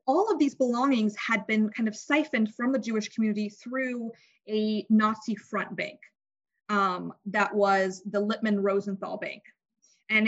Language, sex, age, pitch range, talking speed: English, female, 20-39, 200-245 Hz, 145 wpm